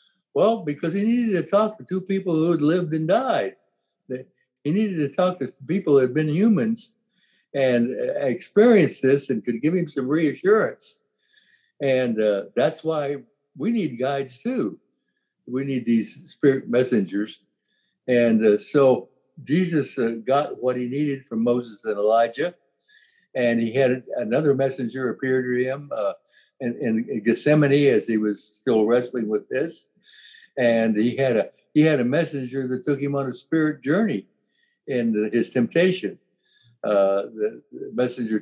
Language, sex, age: English, male, 60-79